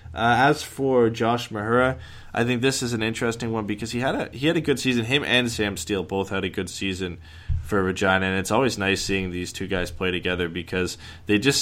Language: English